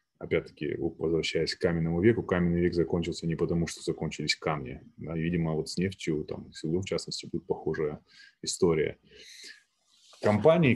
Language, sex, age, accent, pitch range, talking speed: Russian, male, 20-39, native, 80-90 Hz, 135 wpm